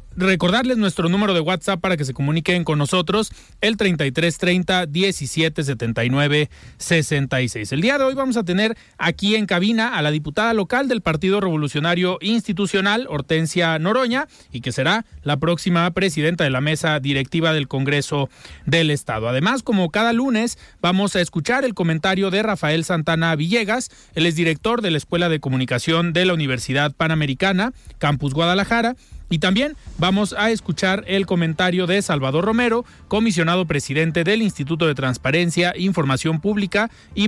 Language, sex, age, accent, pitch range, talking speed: Spanish, male, 30-49, Mexican, 155-200 Hz, 150 wpm